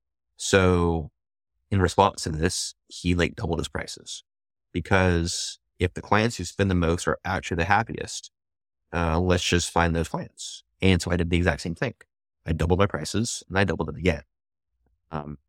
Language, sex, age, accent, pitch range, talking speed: English, male, 30-49, American, 80-95 Hz, 180 wpm